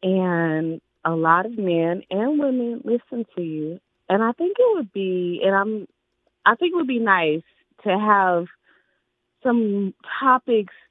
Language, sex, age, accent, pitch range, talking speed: English, female, 30-49, American, 155-215 Hz, 155 wpm